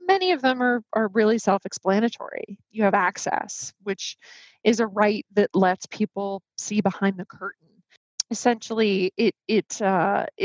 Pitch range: 195-235 Hz